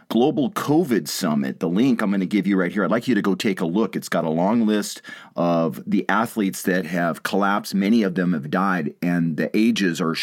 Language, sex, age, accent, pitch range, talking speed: English, male, 40-59, American, 95-120 Hz, 235 wpm